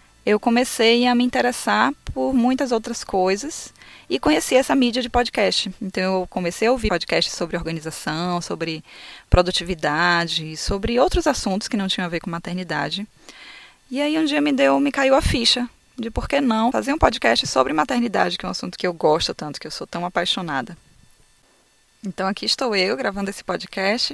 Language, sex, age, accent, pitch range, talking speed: Portuguese, female, 20-39, Brazilian, 170-230 Hz, 185 wpm